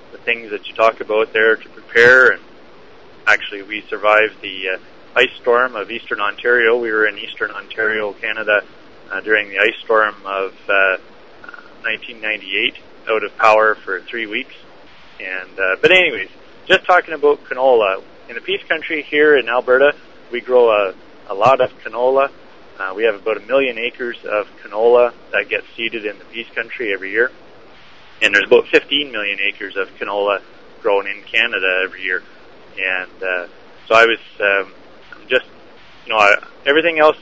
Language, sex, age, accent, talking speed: English, male, 30-49, American, 170 wpm